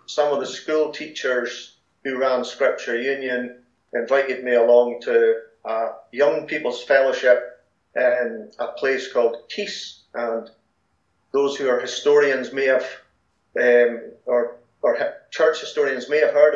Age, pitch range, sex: 40-59, 120-155 Hz, male